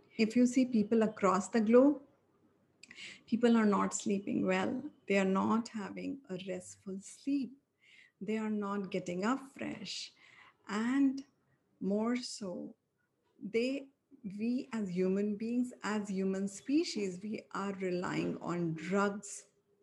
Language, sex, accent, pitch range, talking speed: English, female, Indian, 185-225 Hz, 125 wpm